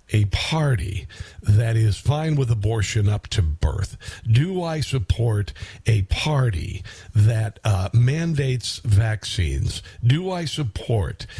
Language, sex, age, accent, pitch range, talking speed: English, male, 50-69, American, 100-150 Hz, 115 wpm